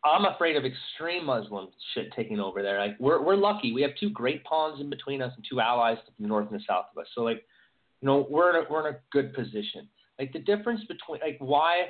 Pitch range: 135-200 Hz